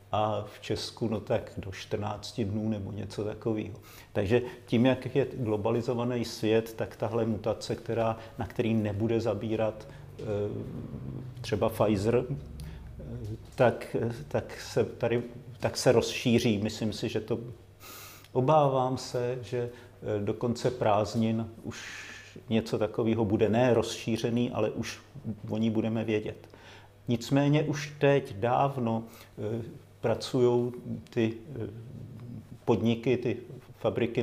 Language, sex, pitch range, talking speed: Slovak, male, 110-120 Hz, 115 wpm